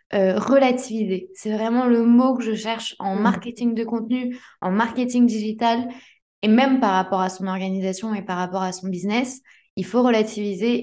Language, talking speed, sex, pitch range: French, 175 wpm, female, 195-240 Hz